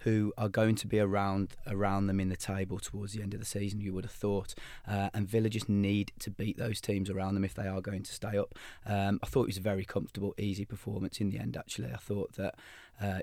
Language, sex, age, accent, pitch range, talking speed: English, male, 20-39, British, 100-110 Hz, 260 wpm